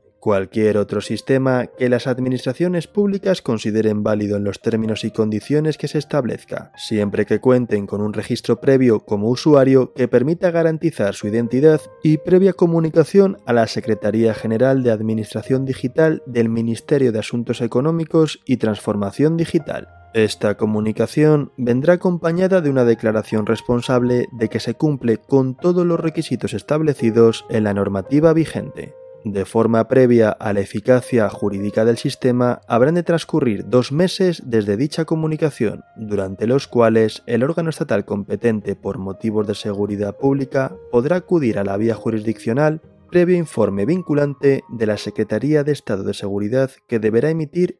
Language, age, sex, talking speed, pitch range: Spanish, 20-39, male, 150 wpm, 110-150 Hz